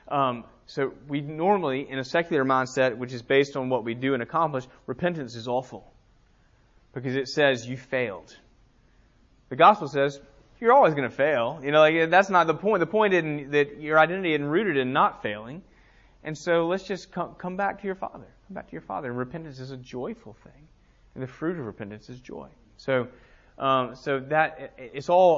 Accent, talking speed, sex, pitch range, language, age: American, 200 wpm, male, 125-160 Hz, English, 30-49